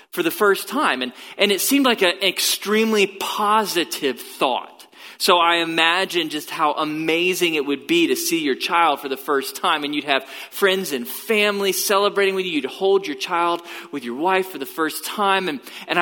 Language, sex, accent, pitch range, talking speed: English, male, American, 160-235 Hz, 195 wpm